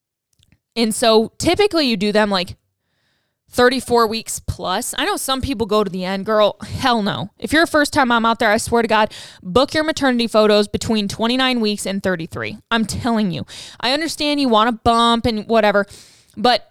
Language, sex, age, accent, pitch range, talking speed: English, female, 10-29, American, 200-245 Hz, 195 wpm